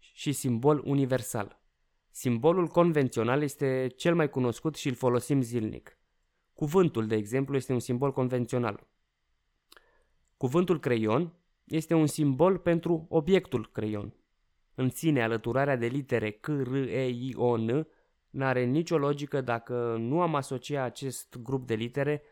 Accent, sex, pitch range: native, male, 120-155 Hz